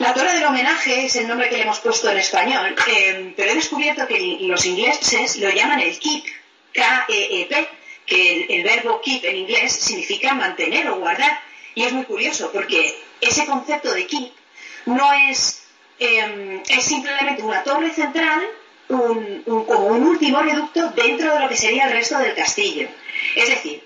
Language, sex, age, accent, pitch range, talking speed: Spanish, female, 40-59, Spanish, 225-370 Hz, 175 wpm